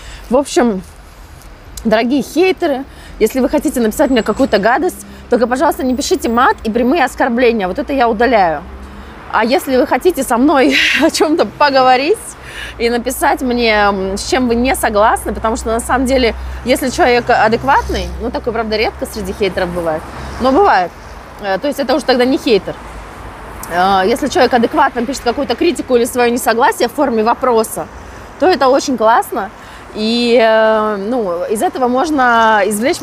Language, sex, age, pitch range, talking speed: Russian, female, 20-39, 225-280 Hz, 155 wpm